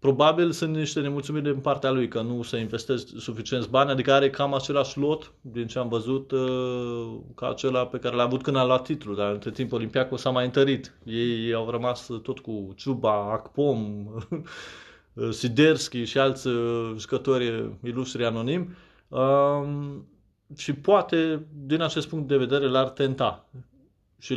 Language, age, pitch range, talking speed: Romanian, 20-39, 115-140 Hz, 155 wpm